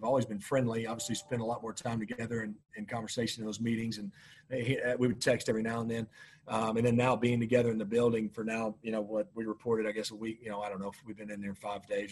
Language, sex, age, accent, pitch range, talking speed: English, male, 40-59, American, 105-125 Hz, 280 wpm